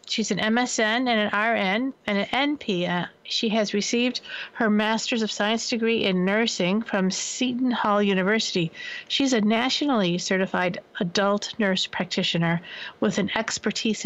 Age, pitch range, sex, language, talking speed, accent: 50-69, 195-230 Hz, female, English, 140 wpm, American